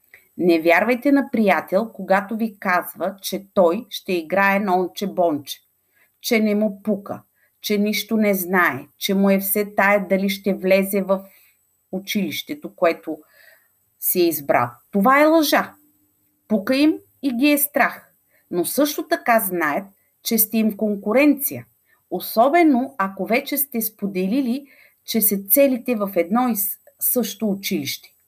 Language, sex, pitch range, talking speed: Bulgarian, female, 175-240 Hz, 135 wpm